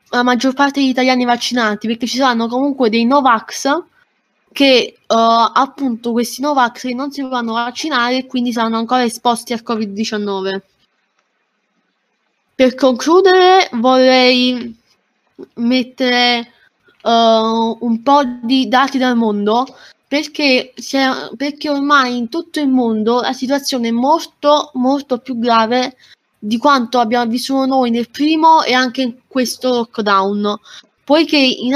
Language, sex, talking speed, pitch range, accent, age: Italian, female, 130 wpm, 235-280 Hz, native, 20-39